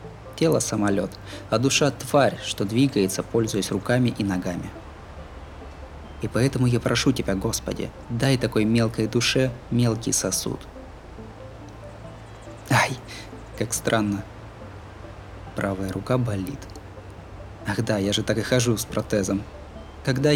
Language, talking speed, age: Russian, 115 wpm, 20-39